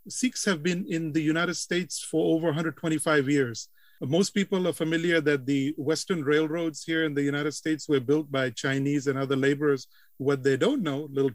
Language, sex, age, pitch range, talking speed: English, male, 40-59, 140-170 Hz, 190 wpm